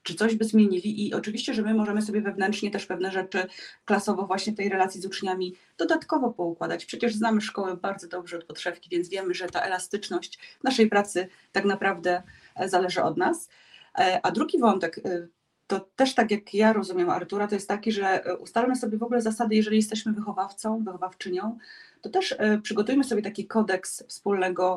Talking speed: 175 wpm